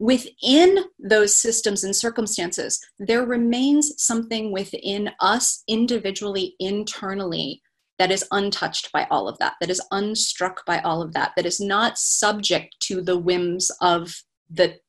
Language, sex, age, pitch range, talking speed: English, female, 30-49, 175-215 Hz, 140 wpm